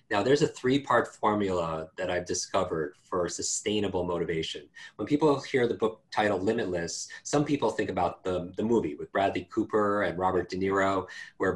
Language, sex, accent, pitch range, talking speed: English, male, American, 90-110 Hz, 170 wpm